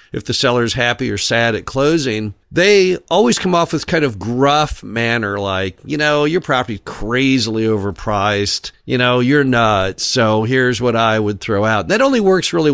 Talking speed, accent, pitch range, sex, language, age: 185 wpm, American, 115-150 Hz, male, English, 50-69